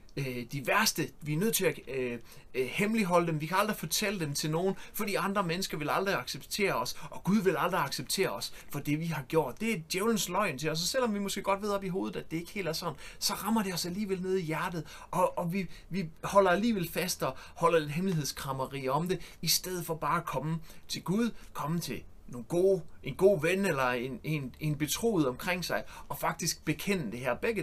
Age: 30-49